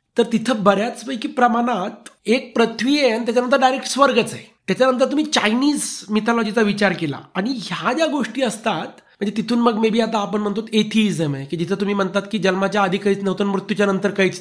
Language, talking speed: Marathi, 185 wpm